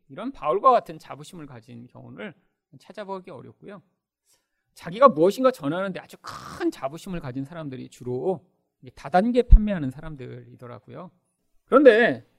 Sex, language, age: male, Korean, 40-59